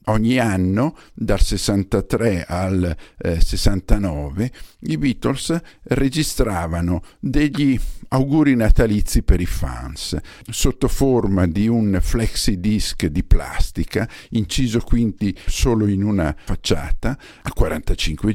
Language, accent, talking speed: Italian, native, 105 wpm